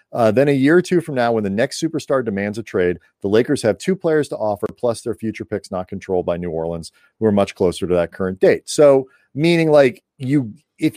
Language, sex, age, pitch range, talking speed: English, male, 40-59, 100-145 Hz, 240 wpm